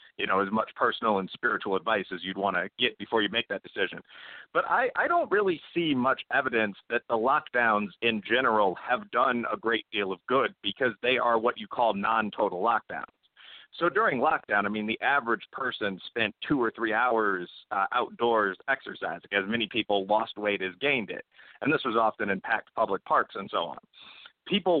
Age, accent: 40-59, American